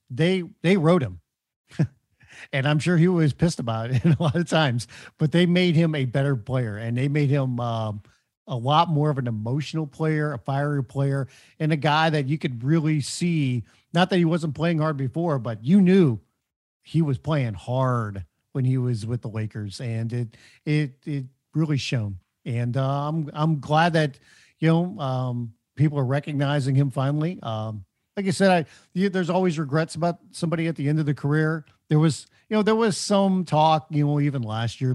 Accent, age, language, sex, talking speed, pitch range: American, 50-69, English, male, 200 wpm, 125-160 Hz